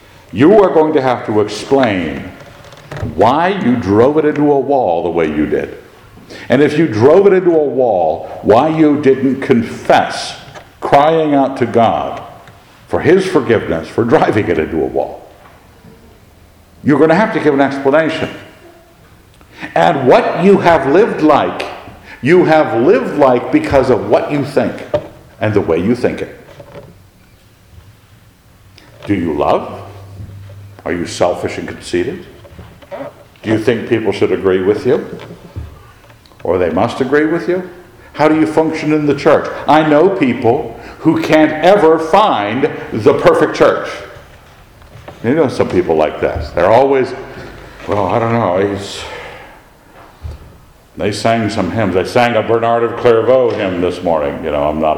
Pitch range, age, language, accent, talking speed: 100-155 Hz, 60-79, English, American, 155 wpm